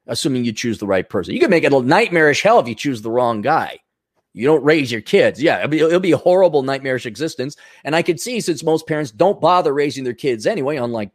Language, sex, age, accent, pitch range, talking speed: English, male, 30-49, American, 155-250 Hz, 250 wpm